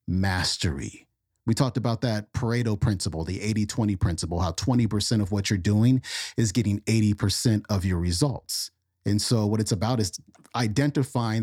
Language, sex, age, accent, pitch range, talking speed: English, male, 40-59, American, 110-135 Hz, 150 wpm